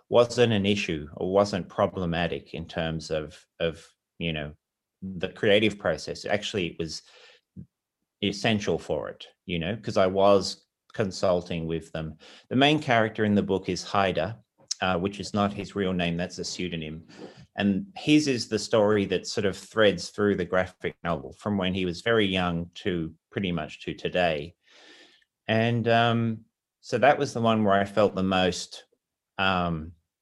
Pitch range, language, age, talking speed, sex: 85-105 Hz, English, 30-49, 165 wpm, male